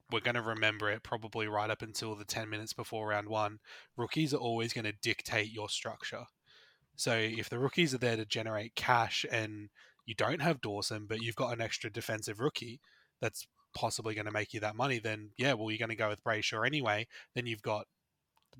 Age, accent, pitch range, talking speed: 20-39, Australian, 110-125 Hz, 215 wpm